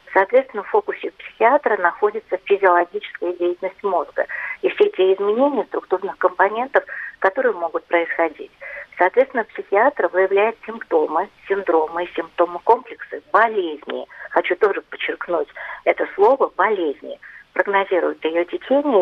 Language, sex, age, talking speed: Russian, female, 40-59, 105 wpm